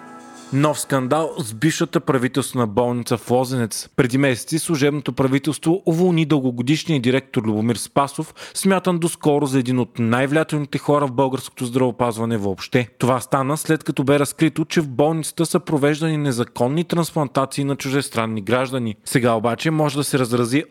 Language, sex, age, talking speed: Bulgarian, male, 30-49, 145 wpm